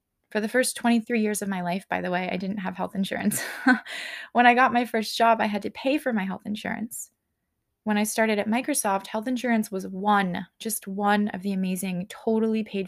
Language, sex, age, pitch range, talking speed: English, female, 20-39, 195-235 Hz, 215 wpm